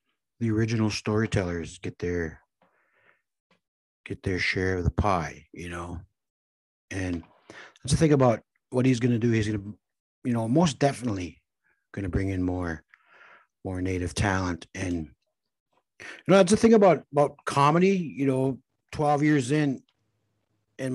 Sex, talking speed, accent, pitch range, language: male, 150 wpm, American, 95-125 Hz, English